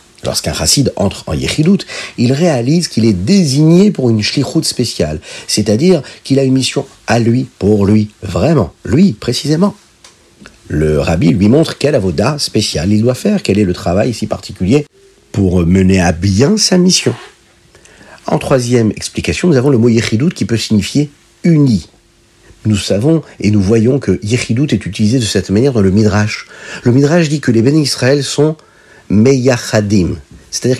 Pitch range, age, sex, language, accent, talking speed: 95-140 Hz, 50-69, male, French, French, 165 wpm